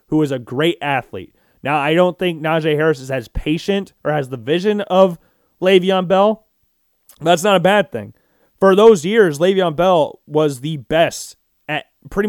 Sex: male